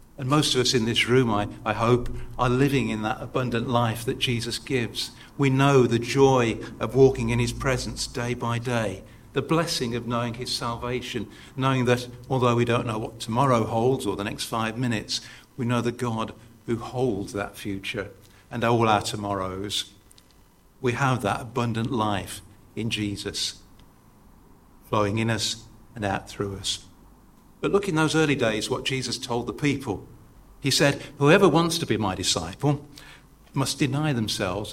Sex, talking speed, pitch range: male, 170 wpm, 105-130 Hz